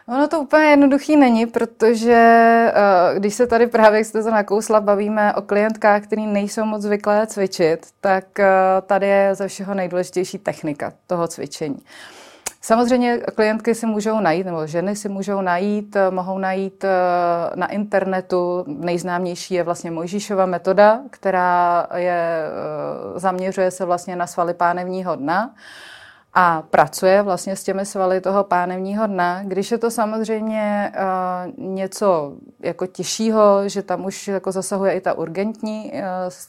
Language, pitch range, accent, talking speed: Czech, 180-210 Hz, native, 140 wpm